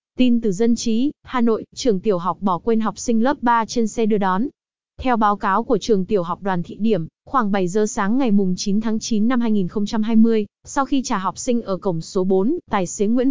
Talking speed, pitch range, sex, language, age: 235 wpm, 205-245 Hz, female, Vietnamese, 20-39